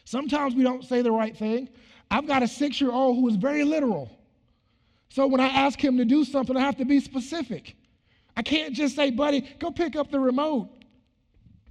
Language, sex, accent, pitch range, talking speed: English, male, American, 190-275 Hz, 195 wpm